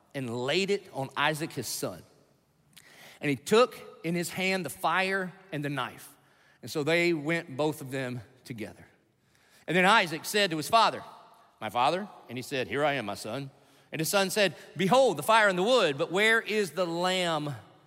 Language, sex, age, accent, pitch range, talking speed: English, male, 40-59, American, 140-200 Hz, 195 wpm